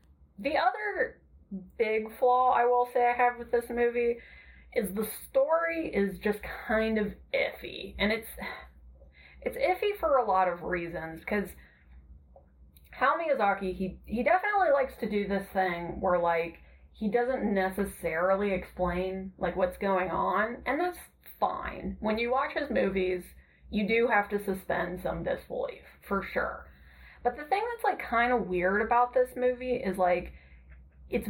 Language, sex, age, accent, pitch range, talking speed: English, female, 20-39, American, 180-245 Hz, 155 wpm